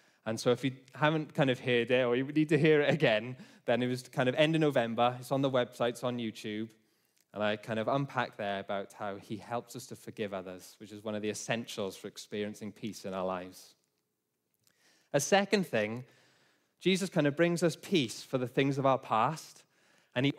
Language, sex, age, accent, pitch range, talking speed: English, male, 20-39, British, 115-155 Hz, 220 wpm